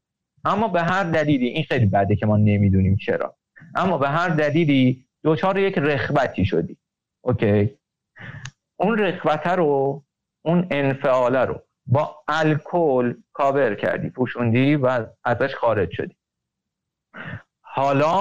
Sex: male